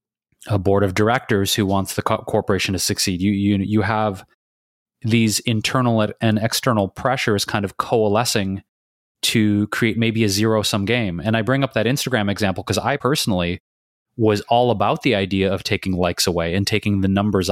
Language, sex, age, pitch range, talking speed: English, male, 30-49, 100-120 Hz, 170 wpm